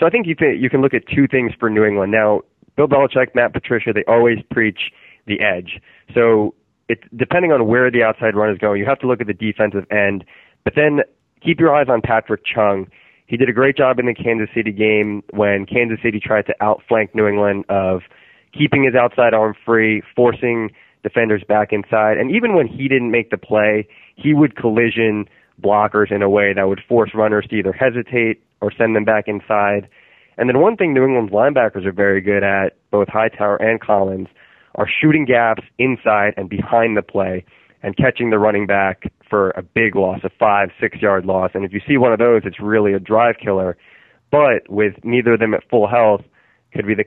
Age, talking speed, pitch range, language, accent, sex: 20-39, 210 wpm, 100-120 Hz, English, American, male